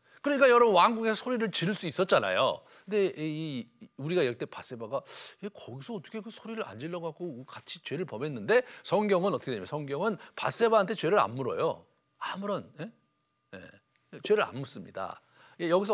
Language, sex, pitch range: Korean, male, 130-205 Hz